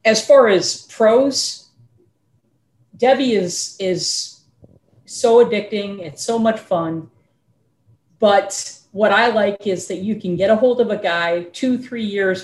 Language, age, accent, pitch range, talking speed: English, 40-59, American, 175-220 Hz, 145 wpm